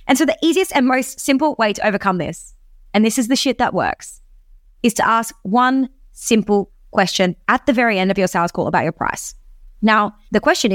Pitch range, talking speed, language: 190-255 Hz, 210 wpm, English